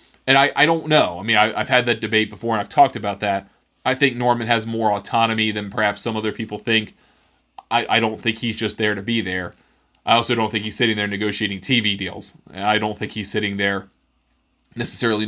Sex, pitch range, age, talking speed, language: male, 105-120 Hz, 20-39, 225 wpm, English